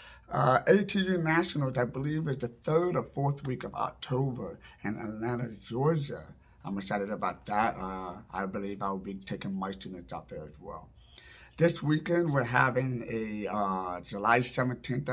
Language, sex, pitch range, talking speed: English, male, 120-145 Hz, 160 wpm